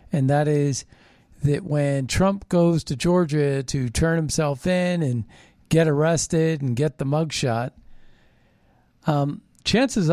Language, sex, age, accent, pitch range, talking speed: English, male, 50-69, American, 130-170 Hz, 135 wpm